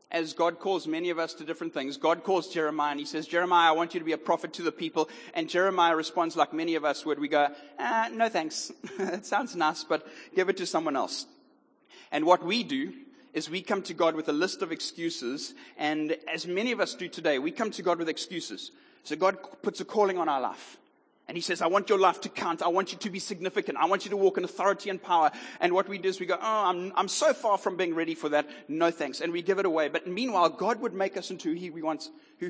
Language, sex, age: English, male, 30-49